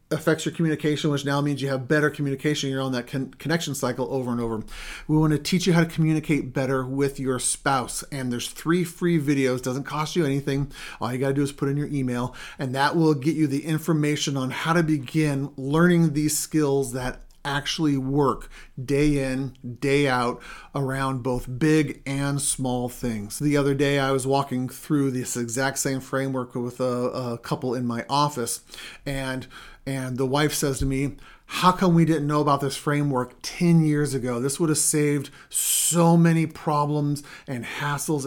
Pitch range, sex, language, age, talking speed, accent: 130-150 Hz, male, English, 40-59, 185 wpm, American